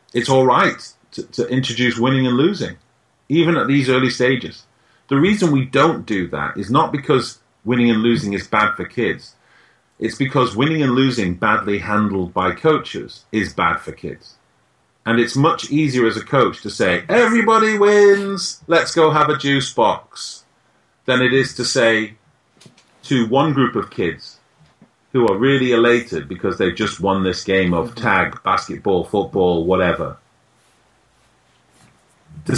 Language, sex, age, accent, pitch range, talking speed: English, male, 40-59, British, 110-140 Hz, 160 wpm